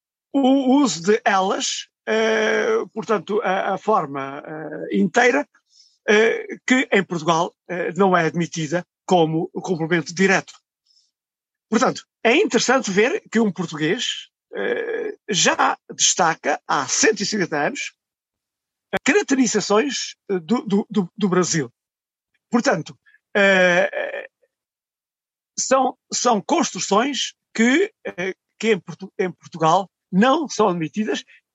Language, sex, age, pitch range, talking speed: Portuguese, male, 50-69, 175-235 Hz, 90 wpm